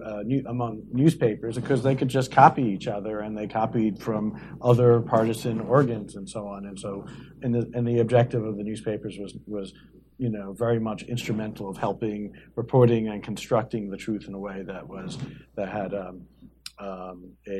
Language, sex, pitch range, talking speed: English, male, 105-125 Hz, 185 wpm